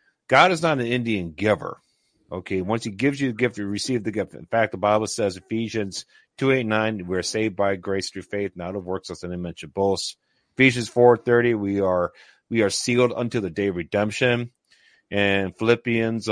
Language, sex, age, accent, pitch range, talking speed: English, male, 40-59, American, 105-140 Hz, 190 wpm